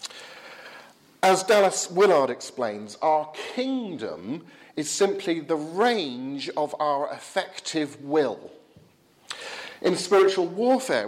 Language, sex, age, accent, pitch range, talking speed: English, male, 50-69, British, 135-195 Hz, 90 wpm